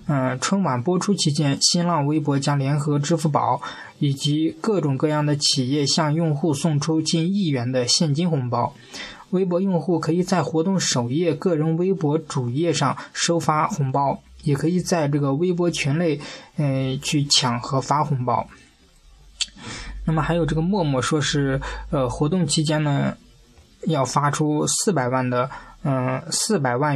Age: 20-39